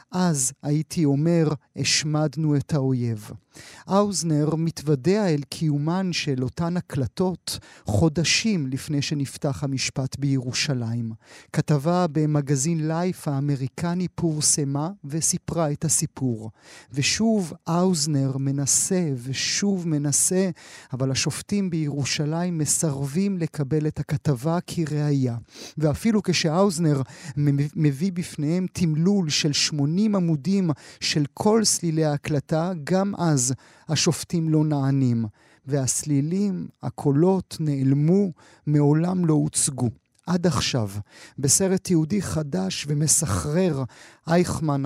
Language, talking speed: Hebrew, 90 wpm